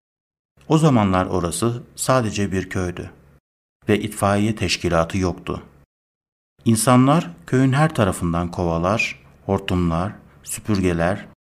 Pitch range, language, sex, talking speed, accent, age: 85-115 Hz, Turkish, male, 90 wpm, native, 60-79